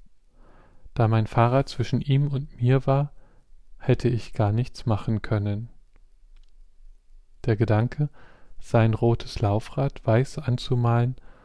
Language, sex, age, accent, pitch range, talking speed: German, male, 40-59, German, 110-125 Hz, 110 wpm